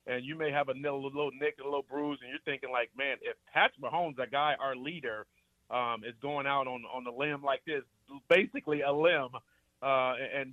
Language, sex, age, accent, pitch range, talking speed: English, male, 40-59, American, 135-165 Hz, 210 wpm